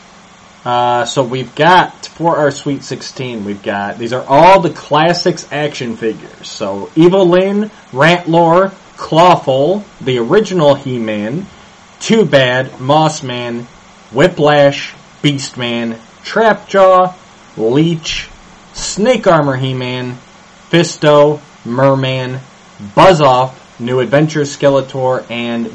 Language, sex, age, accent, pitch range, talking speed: English, male, 30-49, American, 125-175 Hz, 105 wpm